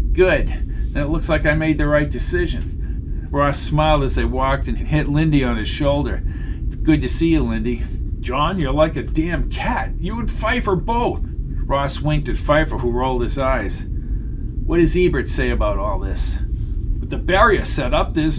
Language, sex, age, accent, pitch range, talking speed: English, male, 50-69, American, 120-165 Hz, 185 wpm